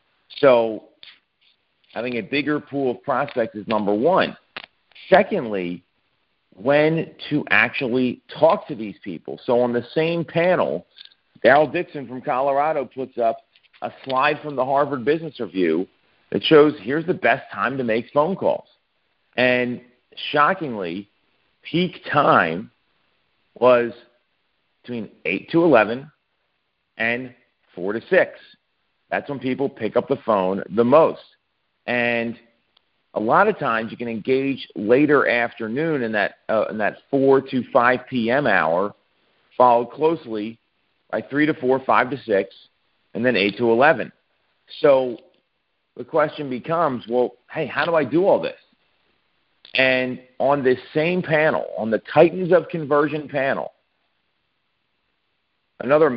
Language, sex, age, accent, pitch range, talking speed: English, male, 50-69, American, 115-150 Hz, 135 wpm